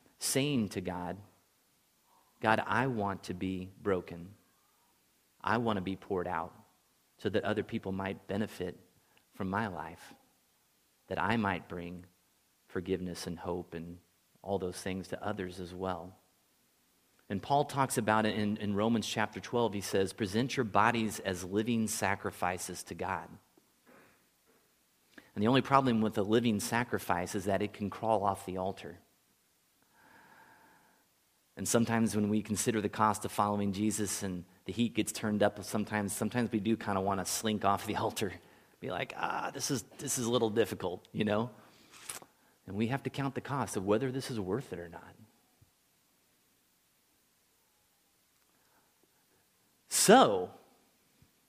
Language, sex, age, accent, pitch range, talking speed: English, male, 30-49, American, 95-115 Hz, 155 wpm